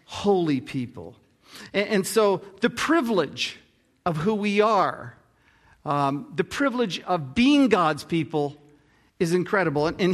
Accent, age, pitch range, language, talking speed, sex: American, 50-69, 155-225 Hz, English, 120 wpm, male